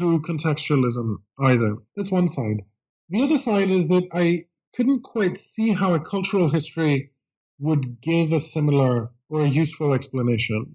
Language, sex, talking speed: English, male, 150 wpm